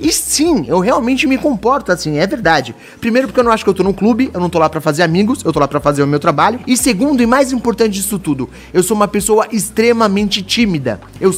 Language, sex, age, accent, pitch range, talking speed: Portuguese, male, 30-49, Brazilian, 155-225 Hz, 255 wpm